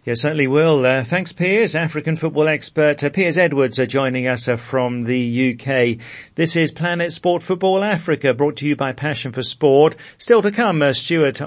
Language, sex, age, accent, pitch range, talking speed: English, male, 40-59, British, 120-155 Hz, 190 wpm